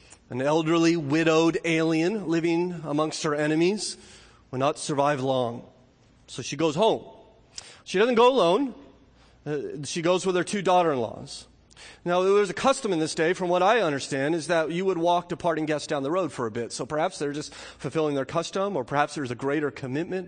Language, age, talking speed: English, 30-49, 190 wpm